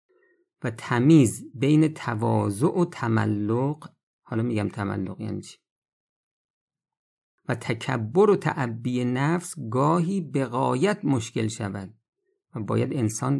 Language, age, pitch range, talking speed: Persian, 50-69, 110-155 Hz, 105 wpm